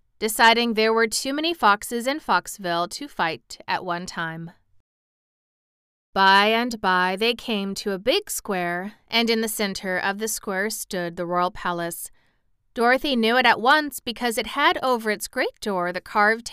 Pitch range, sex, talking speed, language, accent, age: 180-230 Hz, female, 170 wpm, English, American, 30-49